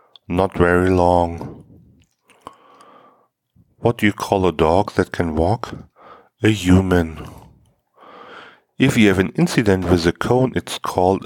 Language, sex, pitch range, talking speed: English, male, 90-115 Hz, 130 wpm